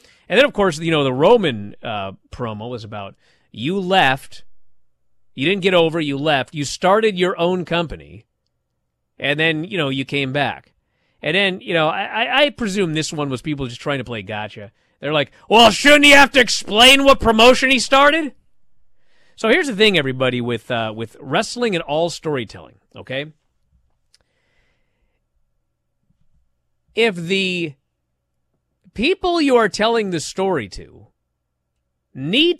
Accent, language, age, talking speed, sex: American, English, 40-59, 155 wpm, male